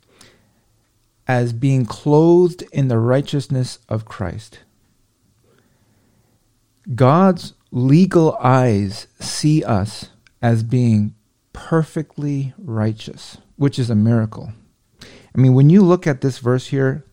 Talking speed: 105 wpm